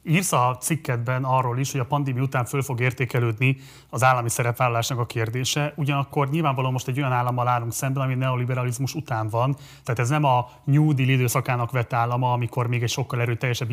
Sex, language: male, Hungarian